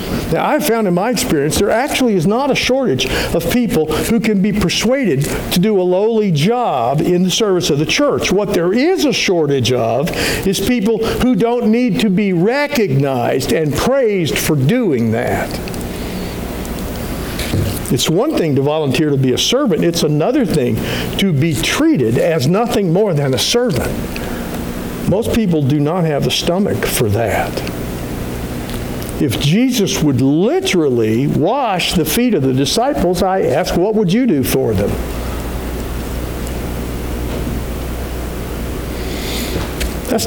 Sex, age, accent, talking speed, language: male, 60-79, American, 145 wpm, English